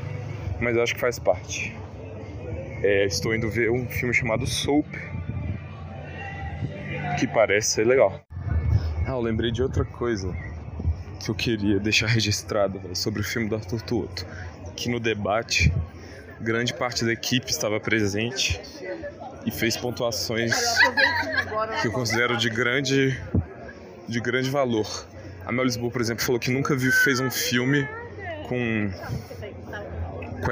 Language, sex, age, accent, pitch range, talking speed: Portuguese, male, 20-39, Brazilian, 100-125 Hz, 140 wpm